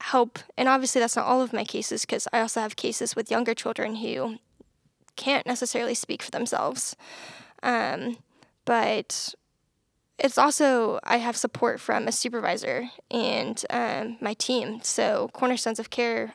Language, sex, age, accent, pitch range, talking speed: English, female, 10-29, American, 235-265 Hz, 150 wpm